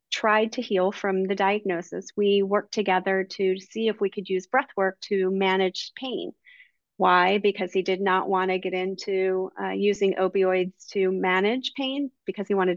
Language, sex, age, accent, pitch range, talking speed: English, female, 30-49, American, 190-220 Hz, 175 wpm